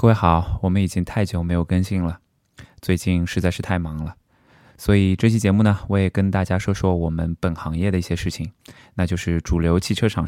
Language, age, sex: Chinese, 20-39, male